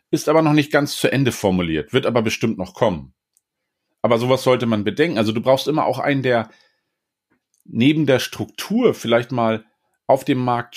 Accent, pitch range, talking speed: German, 115-150 Hz, 185 wpm